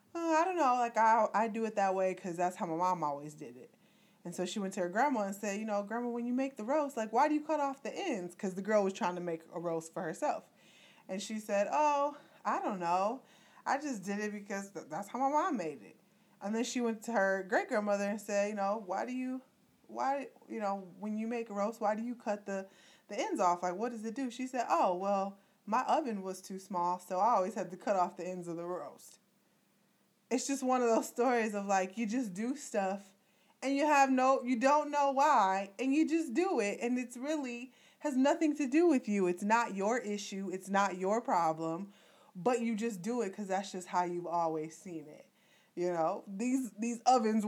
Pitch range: 195-275 Hz